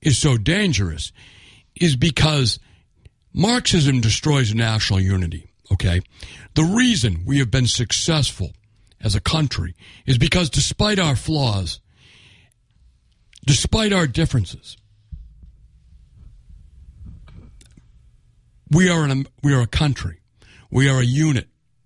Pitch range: 100-140 Hz